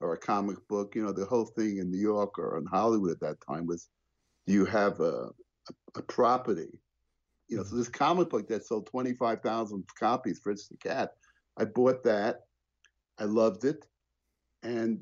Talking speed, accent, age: 190 wpm, American, 50-69